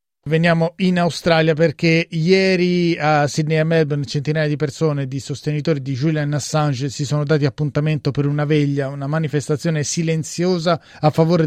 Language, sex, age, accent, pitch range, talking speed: Italian, male, 30-49, native, 145-165 Hz, 150 wpm